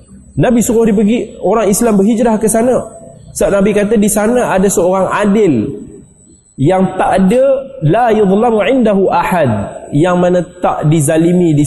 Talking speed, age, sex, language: 155 wpm, 20-39, male, Malay